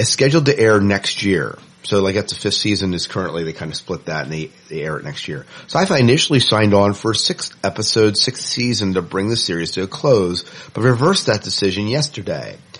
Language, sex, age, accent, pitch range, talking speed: English, male, 30-49, American, 95-125 Hz, 225 wpm